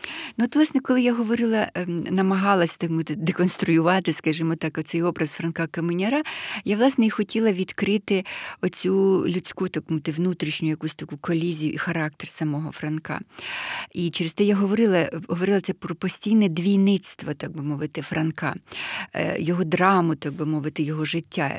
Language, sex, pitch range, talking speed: Ukrainian, female, 170-210 Hz, 150 wpm